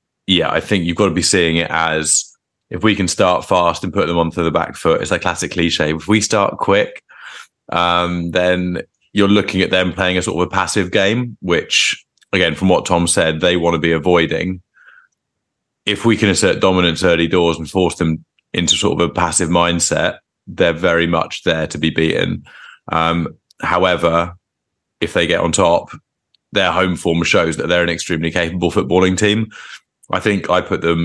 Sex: male